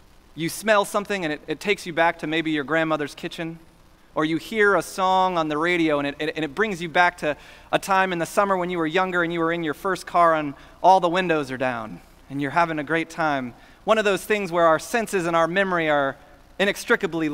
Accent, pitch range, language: American, 155-185 Hz, English